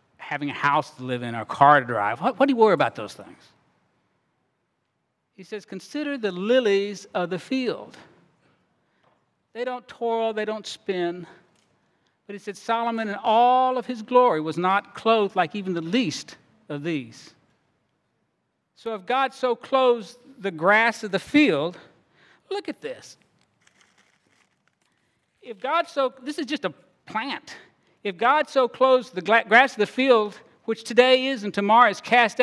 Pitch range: 170-240 Hz